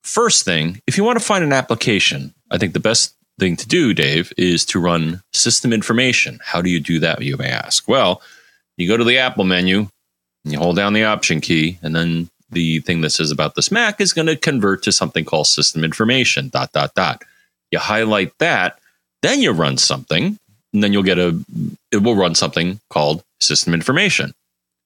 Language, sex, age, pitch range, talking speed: English, male, 30-49, 80-120 Hz, 205 wpm